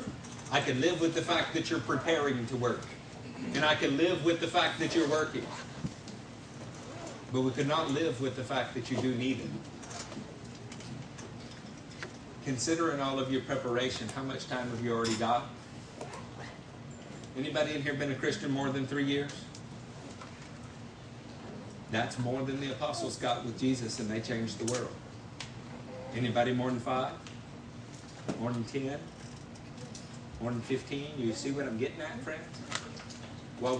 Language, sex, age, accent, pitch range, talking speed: English, male, 50-69, American, 115-135 Hz, 145 wpm